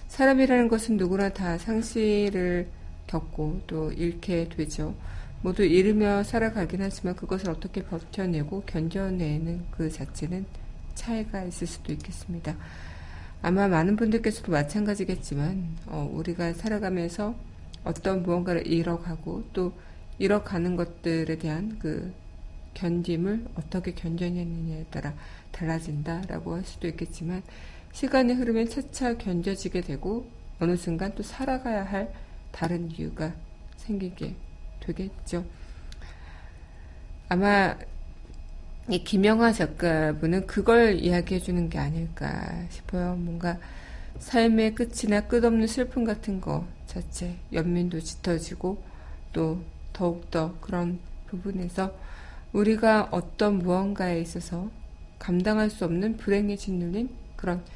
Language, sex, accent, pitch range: Korean, female, native, 165-200 Hz